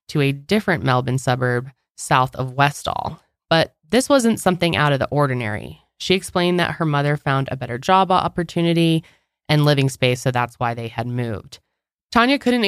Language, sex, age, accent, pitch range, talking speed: English, female, 20-39, American, 130-170 Hz, 175 wpm